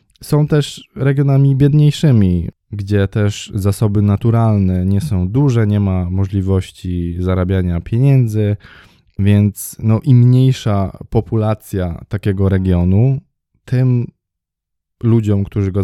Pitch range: 95-120 Hz